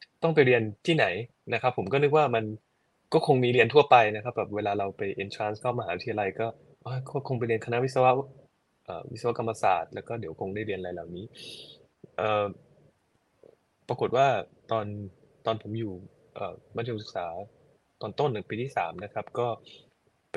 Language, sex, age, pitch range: Thai, male, 20-39, 100-125 Hz